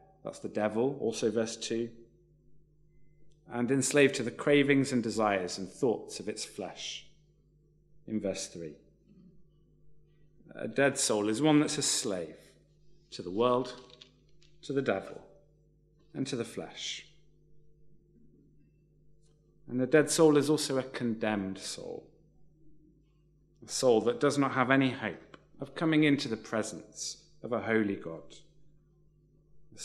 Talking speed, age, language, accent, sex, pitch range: 135 wpm, 40-59, English, British, male, 115-155 Hz